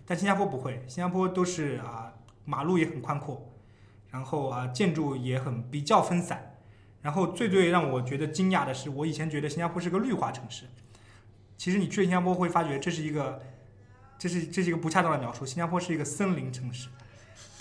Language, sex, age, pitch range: Chinese, male, 20-39, 130-180 Hz